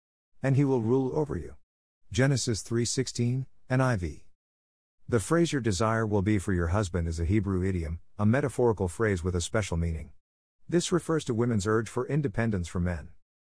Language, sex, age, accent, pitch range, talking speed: English, male, 50-69, American, 85-120 Hz, 175 wpm